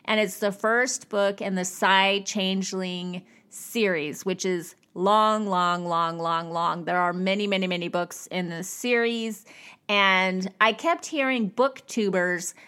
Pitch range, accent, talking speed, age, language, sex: 195-260 Hz, American, 145 wpm, 30-49, English, female